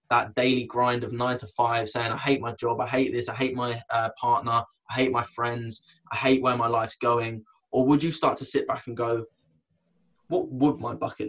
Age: 20-39